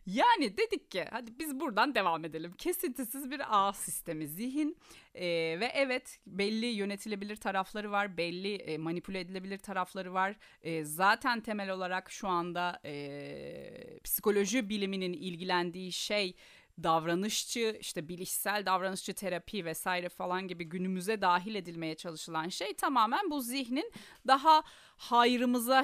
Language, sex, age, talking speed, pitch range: Turkish, female, 30-49, 125 wpm, 170-240 Hz